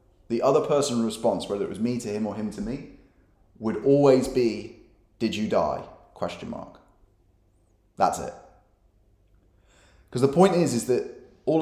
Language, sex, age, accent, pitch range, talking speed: English, male, 30-49, British, 95-115 Hz, 160 wpm